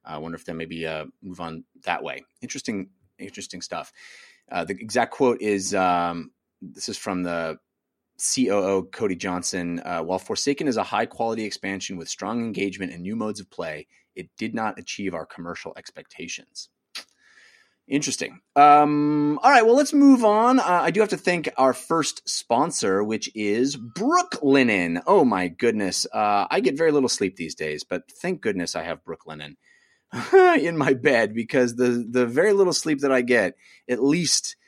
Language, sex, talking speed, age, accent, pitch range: English, male, 175 wpm, 30-49, American, 95-140 Hz